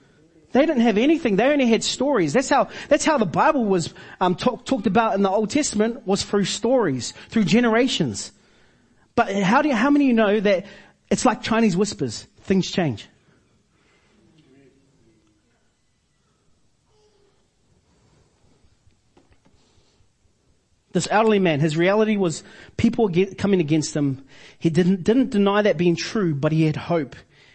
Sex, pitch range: male, 145-205 Hz